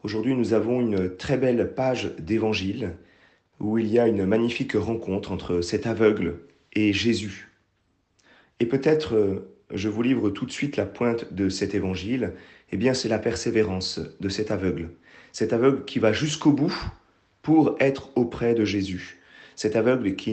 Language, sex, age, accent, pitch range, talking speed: French, male, 40-59, French, 95-120 Hz, 160 wpm